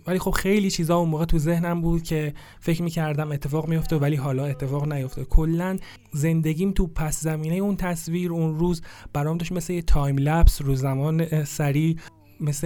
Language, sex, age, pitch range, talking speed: Persian, male, 30-49, 140-165 Hz, 170 wpm